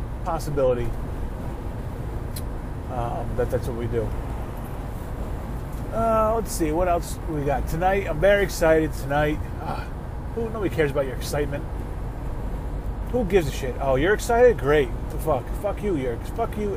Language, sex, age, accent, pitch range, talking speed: English, male, 30-49, American, 120-160 Hz, 150 wpm